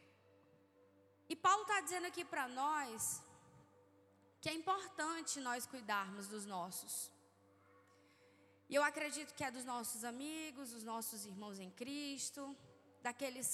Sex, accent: female, Brazilian